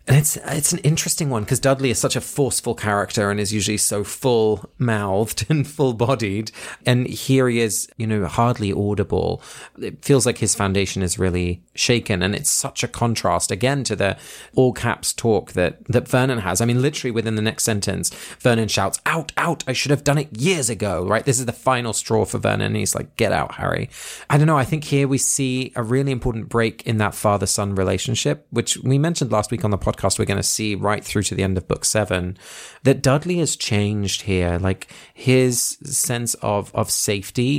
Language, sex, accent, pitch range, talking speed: English, male, British, 100-130 Hz, 205 wpm